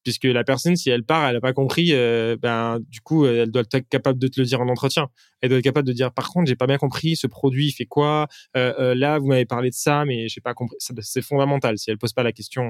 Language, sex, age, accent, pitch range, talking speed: French, male, 20-39, French, 120-145 Hz, 300 wpm